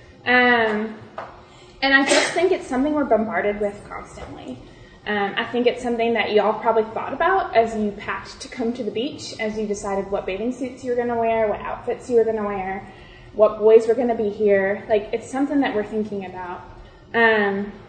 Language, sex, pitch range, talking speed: English, female, 210-255 Hz, 210 wpm